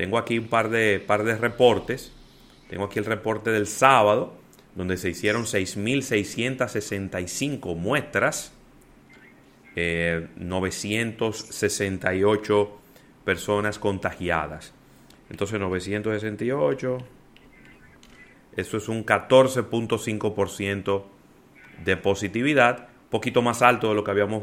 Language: Spanish